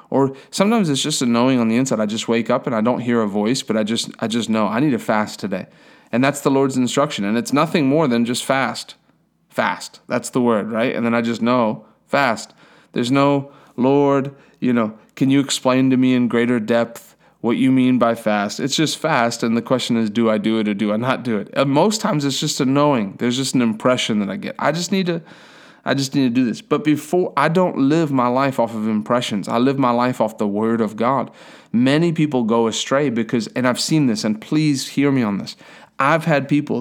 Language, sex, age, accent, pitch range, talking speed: English, male, 30-49, American, 115-145 Hz, 245 wpm